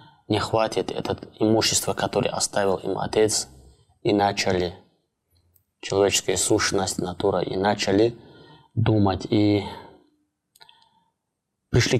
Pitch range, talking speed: 95-110 Hz, 90 wpm